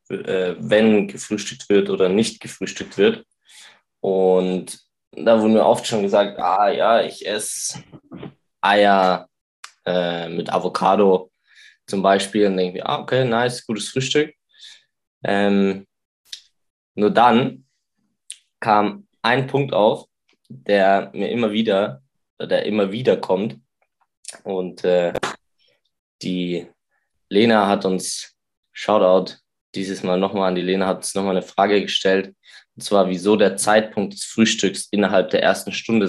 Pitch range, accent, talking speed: 95-115 Hz, German, 130 wpm